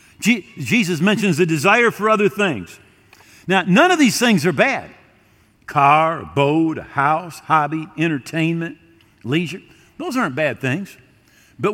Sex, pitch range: male, 155-210 Hz